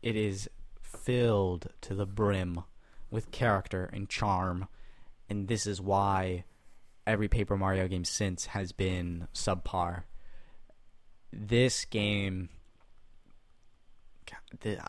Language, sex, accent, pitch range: English, male, American, 95-110 Hz